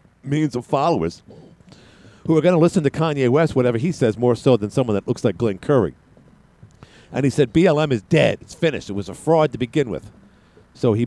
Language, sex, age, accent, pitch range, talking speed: English, male, 50-69, American, 115-155 Hz, 215 wpm